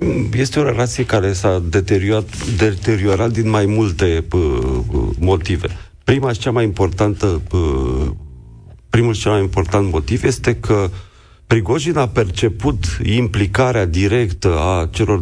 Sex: male